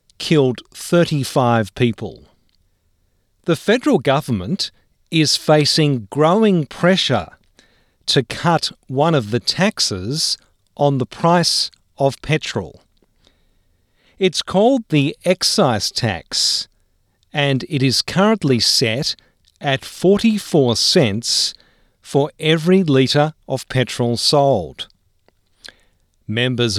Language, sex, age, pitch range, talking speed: English, male, 50-69, 105-165 Hz, 90 wpm